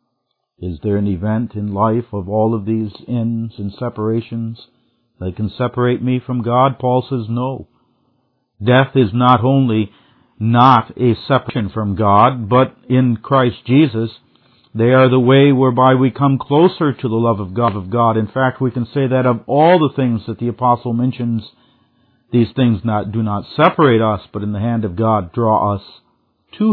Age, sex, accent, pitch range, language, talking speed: 50-69, male, American, 110-130 Hz, English, 180 wpm